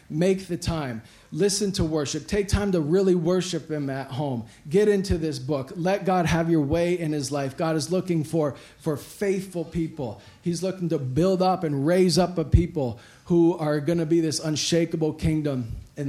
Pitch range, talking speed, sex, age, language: 125-155 Hz, 195 wpm, male, 40-59, English